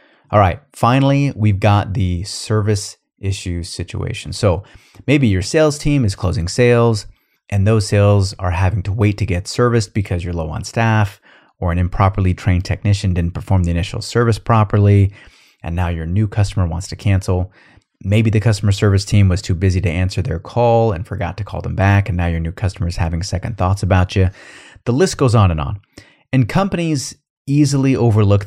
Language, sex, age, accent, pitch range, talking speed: English, male, 30-49, American, 95-115 Hz, 190 wpm